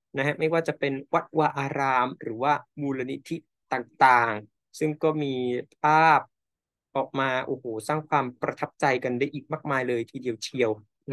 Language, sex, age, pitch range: Thai, male, 20-39, 125-155 Hz